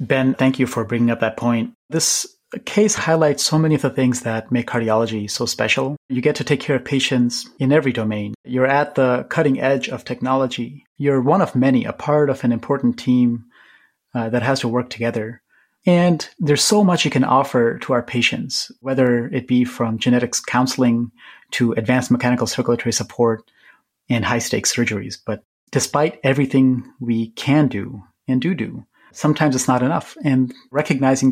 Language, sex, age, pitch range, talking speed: English, male, 30-49, 120-140 Hz, 180 wpm